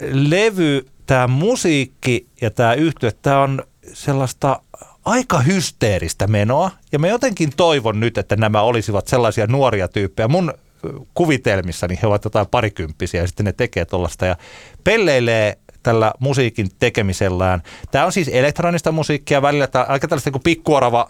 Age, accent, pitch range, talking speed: 30-49, native, 95-130 Hz, 140 wpm